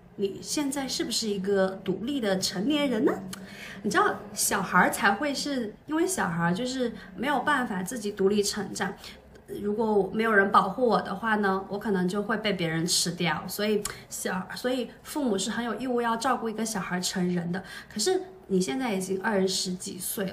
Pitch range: 190-245 Hz